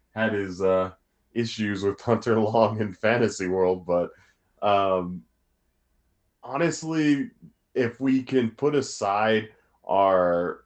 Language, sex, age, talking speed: English, male, 30-49, 105 wpm